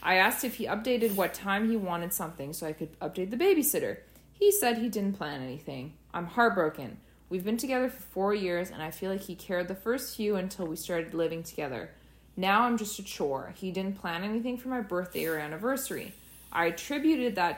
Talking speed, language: 210 wpm, English